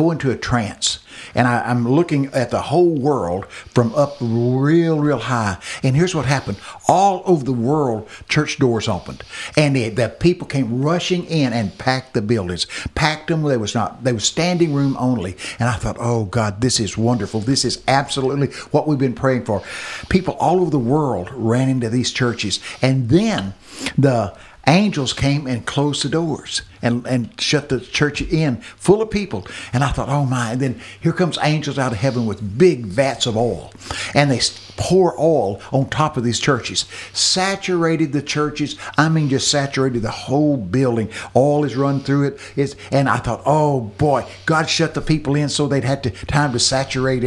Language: English